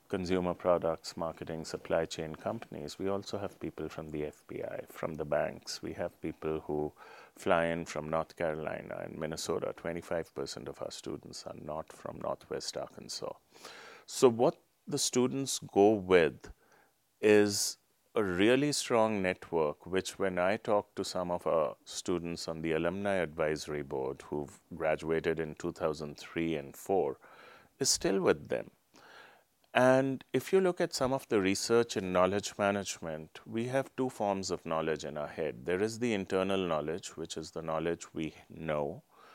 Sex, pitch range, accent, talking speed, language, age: male, 80-100 Hz, Indian, 155 wpm, English, 30-49